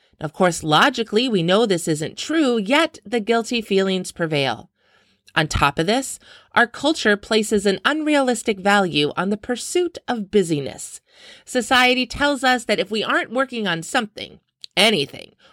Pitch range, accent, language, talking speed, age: 175-255 Hz, American, English, 150 wpm, 30-49